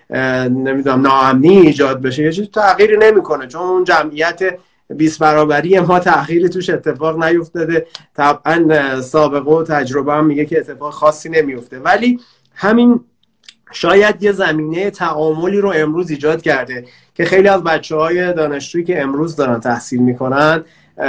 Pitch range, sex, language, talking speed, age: 145-180 Hz, male, Persian, 135 wpm, 30-49